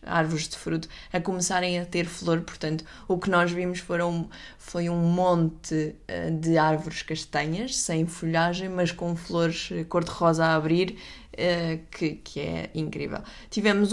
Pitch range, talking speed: 160-185 Hz, 140 wpm